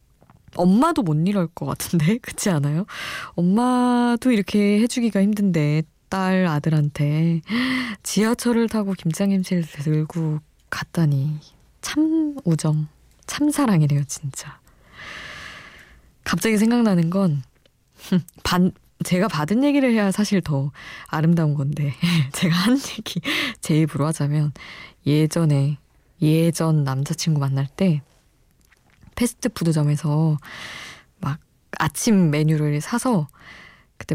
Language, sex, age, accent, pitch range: Korean, female, 20-39, native, 150-215 Hz